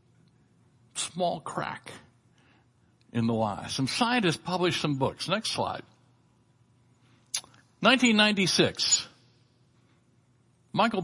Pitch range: 125-155 Hz